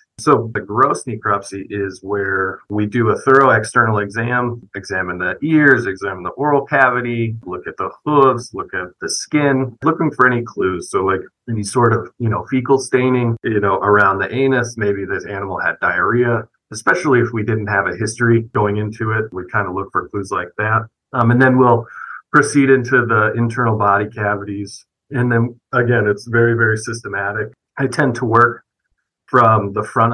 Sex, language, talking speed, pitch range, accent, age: male, English, 185 wpm, 105-125 Hz, American, 40-59